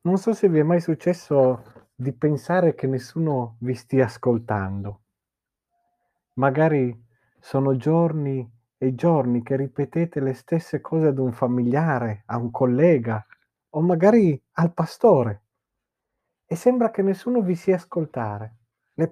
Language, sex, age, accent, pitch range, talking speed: Italian, male, 40-59, native, 120-165 Hz, 130 wpm